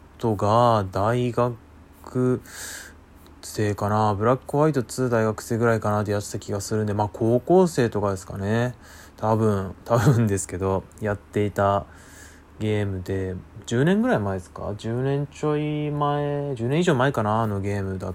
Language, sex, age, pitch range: Japanese, male, 20-39, 95-125 Hz